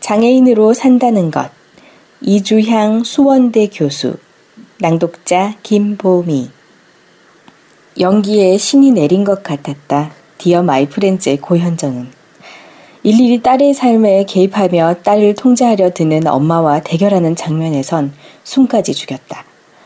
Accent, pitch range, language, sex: native, 150-210 Hz, Korean, female